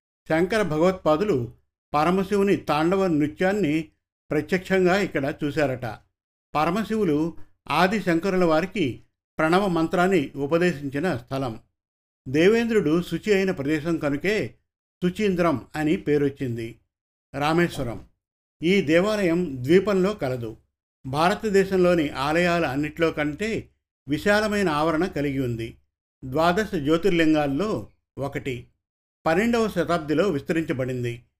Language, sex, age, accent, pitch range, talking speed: Telugu, male, 50-69, native, 140-180 Hz, 80 wpm